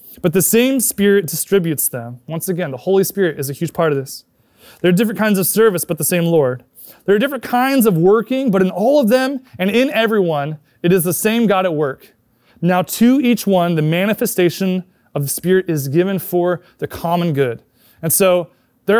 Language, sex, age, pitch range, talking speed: English, male, 20-39, 140-190 Hz, 210 wpm